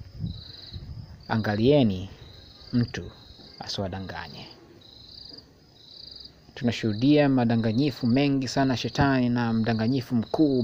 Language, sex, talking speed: Swahili, male, 60 wpm